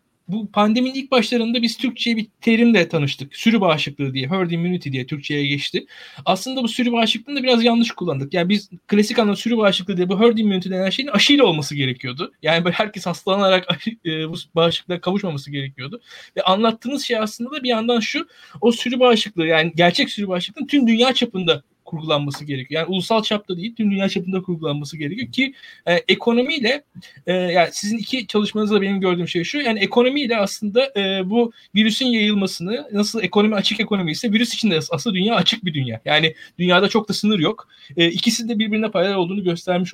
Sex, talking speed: male, 185 wpm